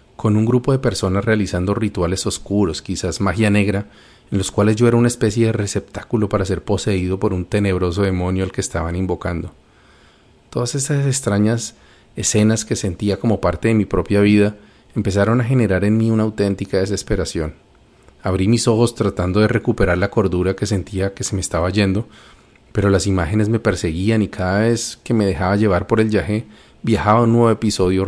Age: 30-49